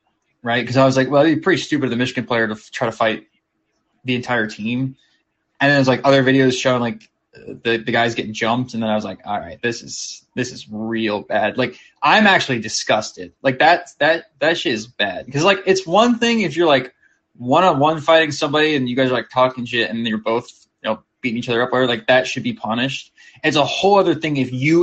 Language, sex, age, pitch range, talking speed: English, male, 20-39, 115-135 Hz, 250 wpm